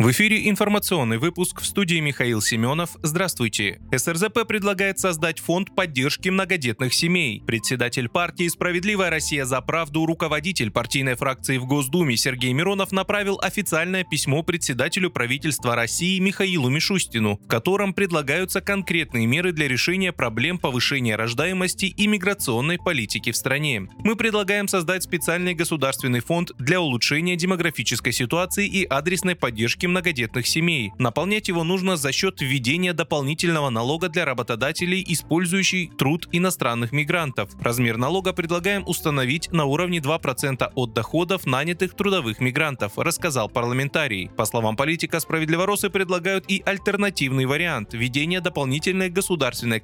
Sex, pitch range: male, 130-185 Hz